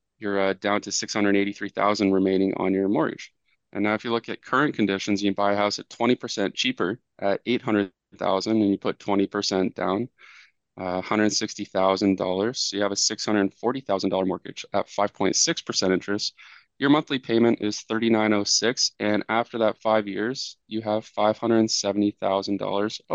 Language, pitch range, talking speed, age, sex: English, 100-110 Hz, 145 wpm, 20-39, male